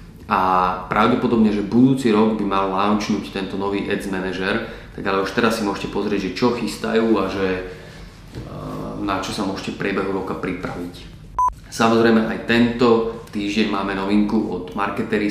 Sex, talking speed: male, 155 wpm